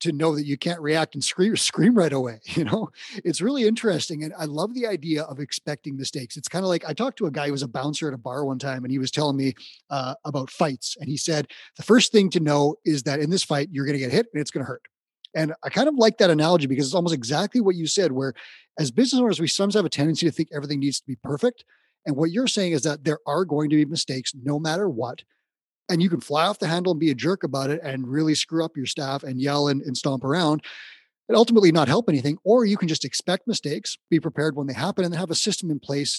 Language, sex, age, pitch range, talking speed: English, male, 30-49, 140-175 Hz, 275 wpm